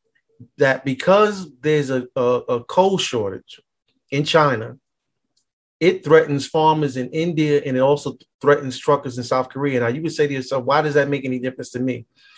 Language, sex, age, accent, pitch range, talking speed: English, male, 30-49, American, 130-160 Hz, 180 wpm